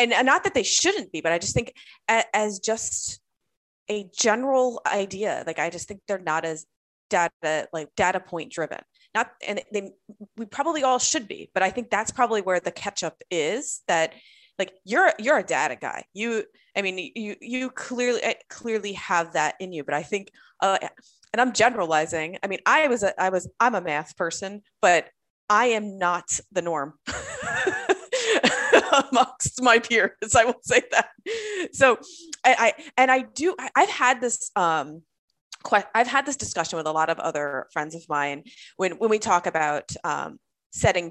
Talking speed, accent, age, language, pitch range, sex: 180 wpm, American, 30-49, English, 155-240 Hz, female